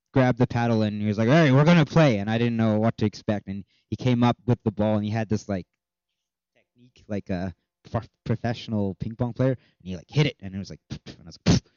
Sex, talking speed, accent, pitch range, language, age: male, 235 wpm, American, 115-150 Hz, English, 20-39